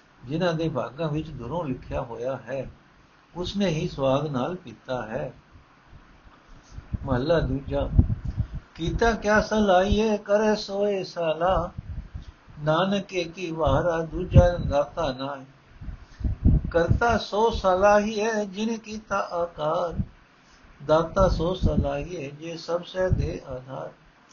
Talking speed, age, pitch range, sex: 110 wpm, 60-79, 140-185 Hz, male